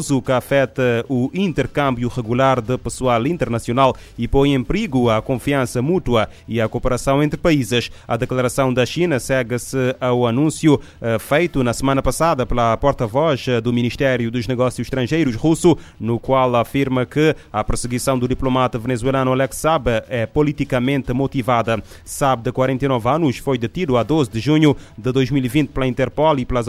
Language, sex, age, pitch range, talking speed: Portuguese, male, 30-49, 120-135 Hz, 155 wpm